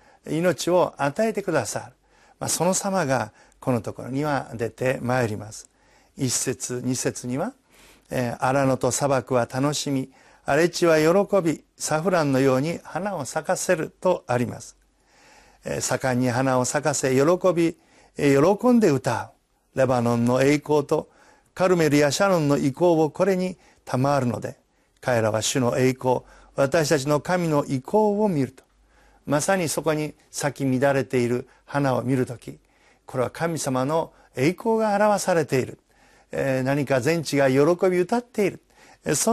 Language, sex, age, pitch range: Japanese, male, 50-69, 130-175 Hz